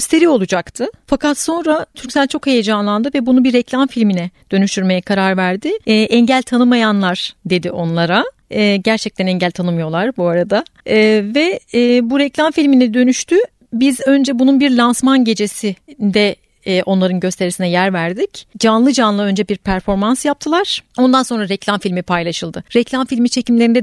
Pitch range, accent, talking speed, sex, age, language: 210-270 Hz, native, 145 wpm, female, 40-59, Turkish